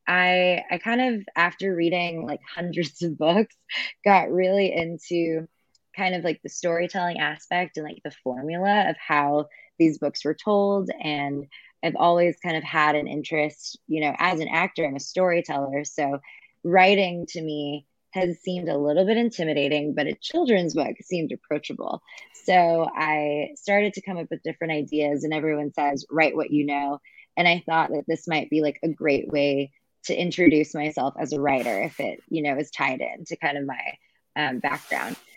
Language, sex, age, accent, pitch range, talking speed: English, female, 20-39, American, 150-180 Hz, 180 wpm